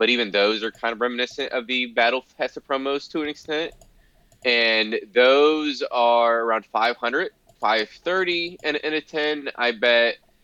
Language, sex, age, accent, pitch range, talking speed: English, male, 20-39, American, 105-135 Hz, 170 wpm